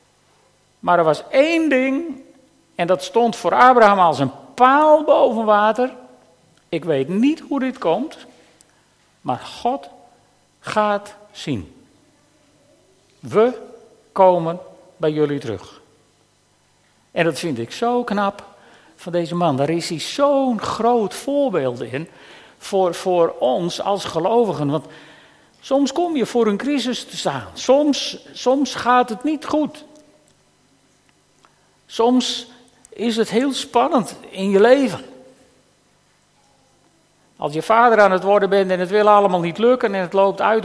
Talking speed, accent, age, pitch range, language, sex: 135 wpm, Dutch, 50-69, 185-255 Hz, Dutch, male